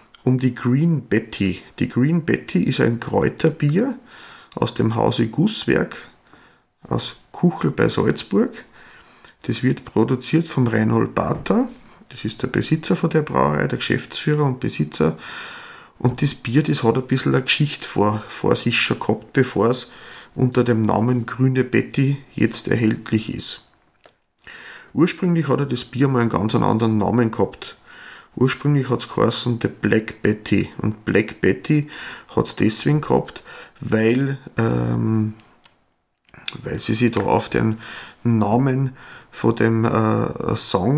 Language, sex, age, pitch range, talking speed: German, male, 40-59, 110-140 Hz, 140 wpm